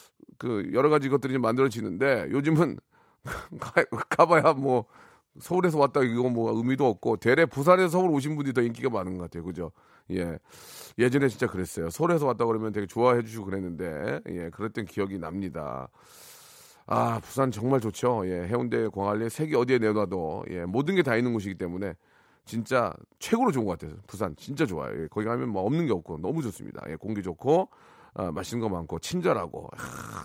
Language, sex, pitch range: Korean, male, 105-155 Hz